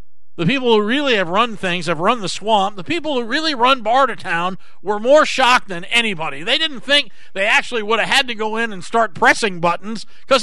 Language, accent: English, American